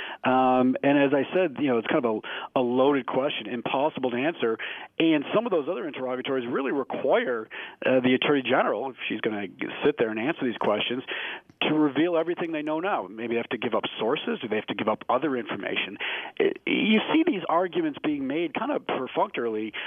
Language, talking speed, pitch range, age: English, 215 wpm, 120-160 Hz, 40-59